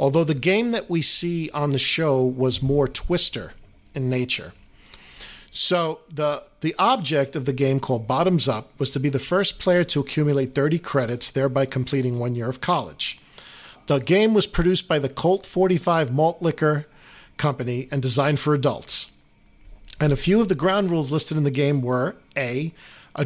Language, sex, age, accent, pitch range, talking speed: English, male, 50-69, American, 135-165 Hz, 180 wpm